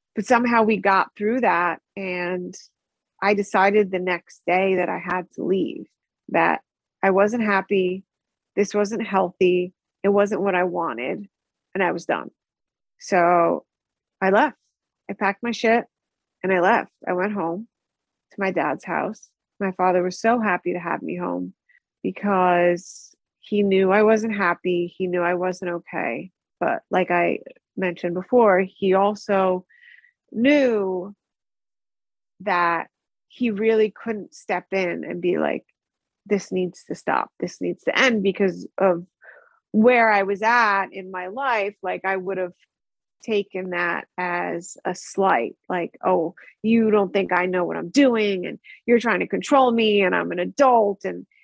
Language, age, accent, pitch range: English, 30-49, American, 180-220 Hz